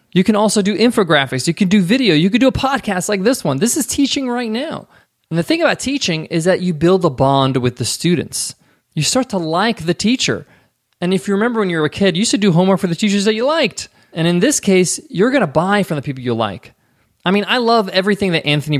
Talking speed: 260 wpm